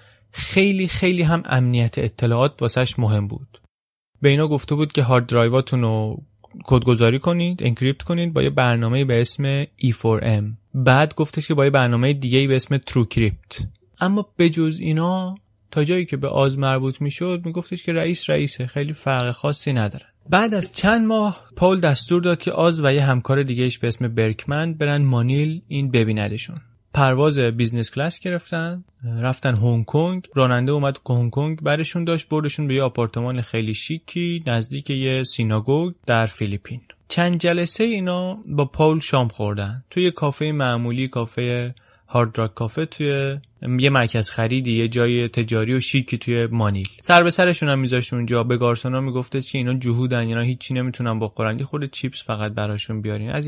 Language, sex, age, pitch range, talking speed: Persian, male, 30-49, 120-155 Hz, 170 wpm